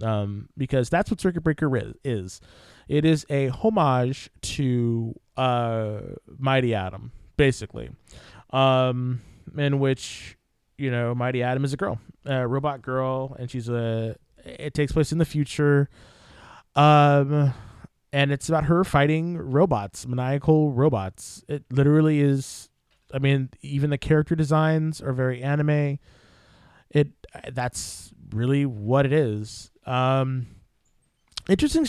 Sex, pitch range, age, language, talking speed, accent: male, 125-165 Hz, 20-39, English, 125 wpm, American